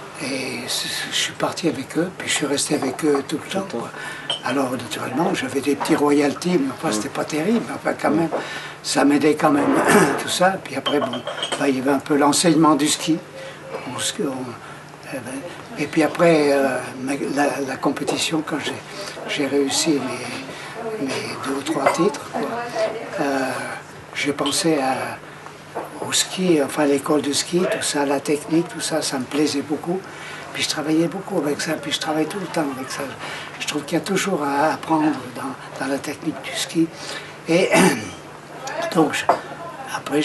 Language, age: French, 60-79